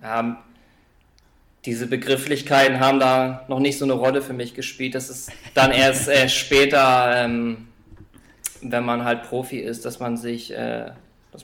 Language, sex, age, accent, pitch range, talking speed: German, male, 20-39, German, 115-130 Hz, 150 wpm